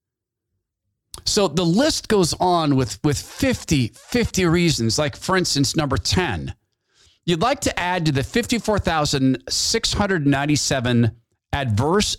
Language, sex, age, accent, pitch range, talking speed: English, male, 40-59, American, 105-175 Hz, 115 wpm